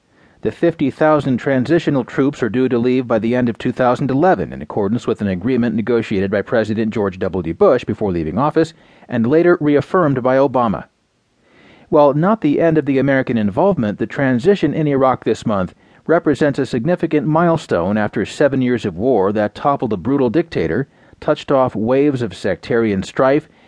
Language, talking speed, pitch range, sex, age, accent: English, 165 wpm, 115-155 Hz, male, 40-59, American